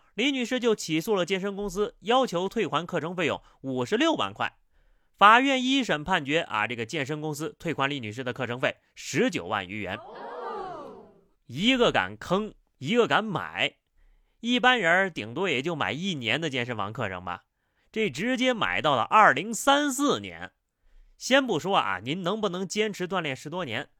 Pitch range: 130-215 Hz